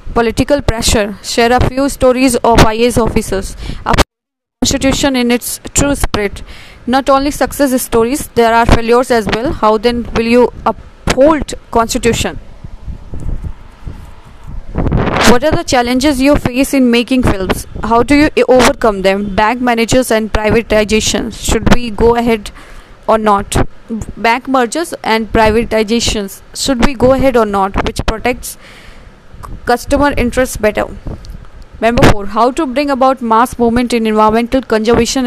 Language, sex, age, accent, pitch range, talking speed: English, female, 20-39, Indian, 225-260 Hz, 135 wpm